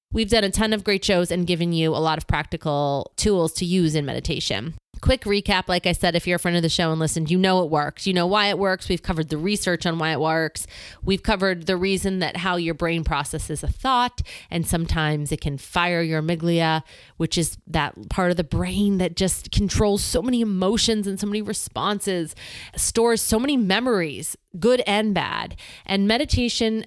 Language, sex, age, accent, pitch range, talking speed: English, female, 30-49, American, 155-195 Hz, 210 wpm